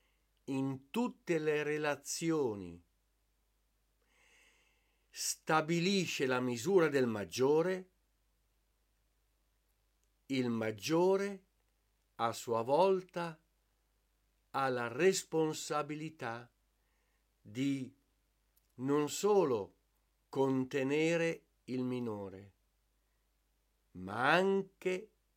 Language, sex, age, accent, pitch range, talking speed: Italian, male, 50-69, native, 110-165 Hz, 60 wpm